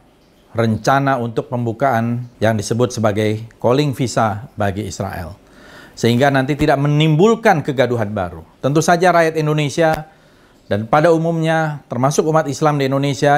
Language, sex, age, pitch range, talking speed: Indonesian, male, 40-59, 115-150 Hz, 125 wpm